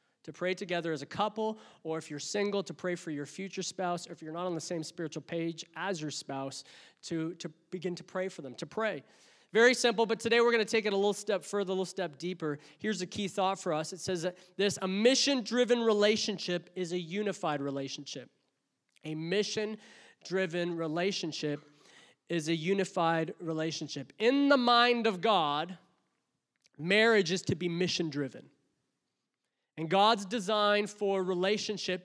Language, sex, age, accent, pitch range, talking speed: English, male, 30-49, American, 170-210 Hz, 175 wpm